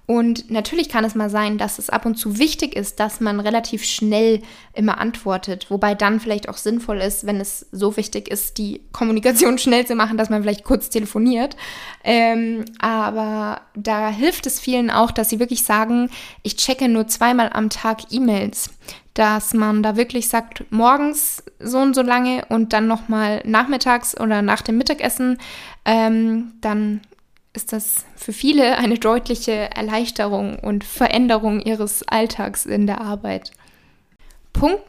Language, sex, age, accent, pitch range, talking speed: German, female, 20-39, German, 215-245 Hz, 160 wpm